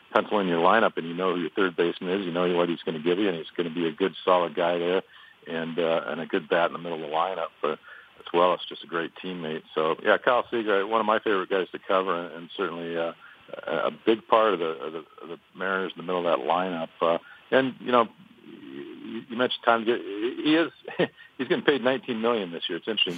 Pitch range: 85-115 Hz